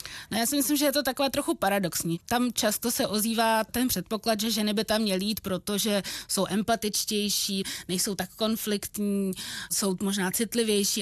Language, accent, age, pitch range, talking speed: Czech, native, 20-39, 205-235 Hz, 170 wpm